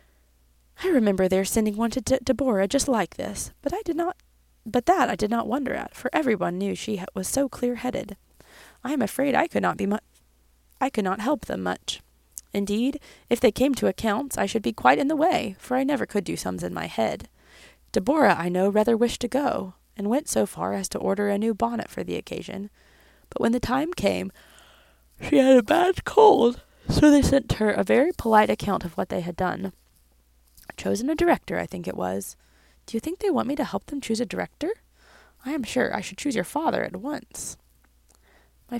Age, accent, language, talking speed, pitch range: 20-39, American, English, 215 wpm, 175-270 Hz